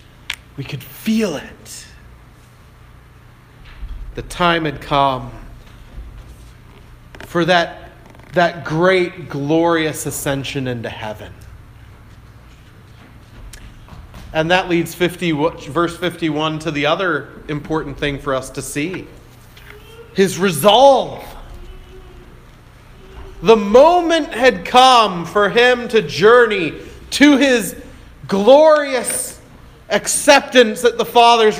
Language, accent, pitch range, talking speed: English, American, 135-205 Hz, 90 wpm